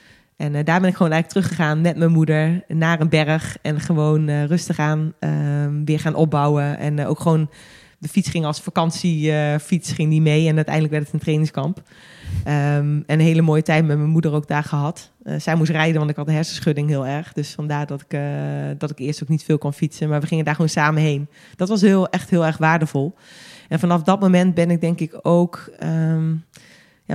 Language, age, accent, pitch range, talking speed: Dutch, 20-39, Dutch, 150-170 Hz, 210 wpm